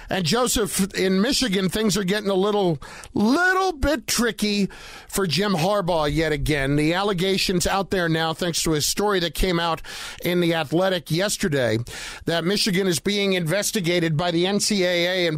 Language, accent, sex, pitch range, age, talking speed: English, American, male, 170-220 Hz, 50-69, 165 wpm